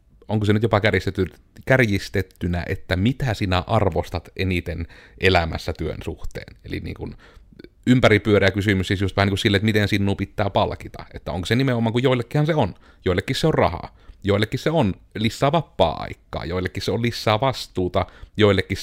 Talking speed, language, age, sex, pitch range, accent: 170 wpm, Finnish, 30-49, male, 90-115 Hz, native